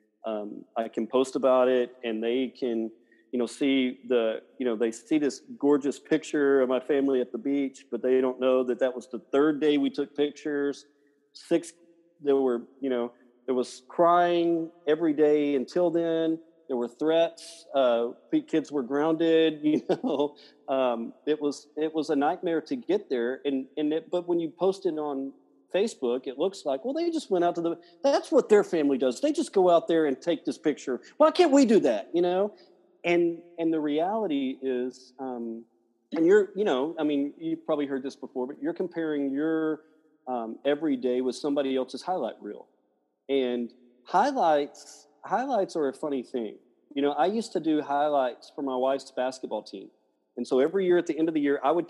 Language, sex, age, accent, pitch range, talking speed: English, male, 40-59, American, 125-165 Hz, 200 wpm